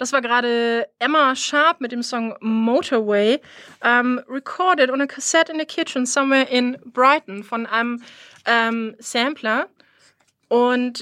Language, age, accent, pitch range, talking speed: English, 30-49, German, 240-300 Hz, 135 wpm